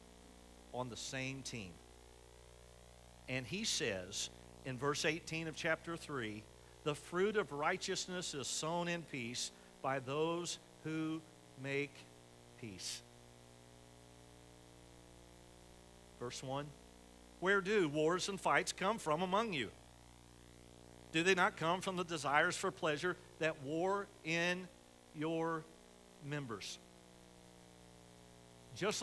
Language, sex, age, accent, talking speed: English, male, 50-69, American, 110 wpm